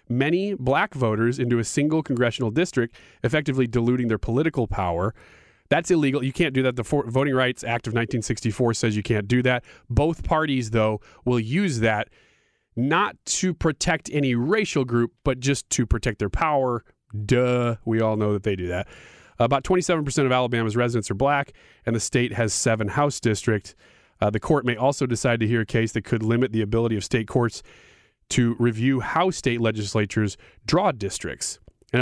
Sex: male